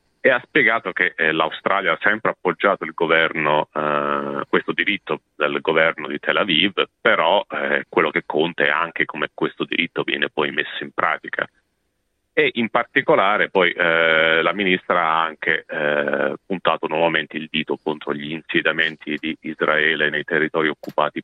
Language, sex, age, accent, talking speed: Italian, male, 40-59, native, 160 wpm